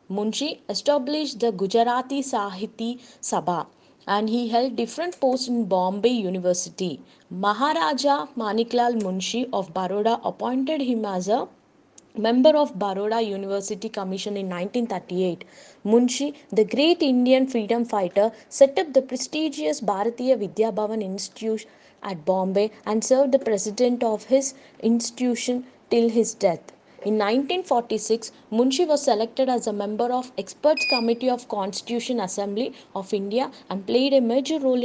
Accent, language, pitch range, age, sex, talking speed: Indian, English, 205-255 Hz, 20-39, female, 130 wpm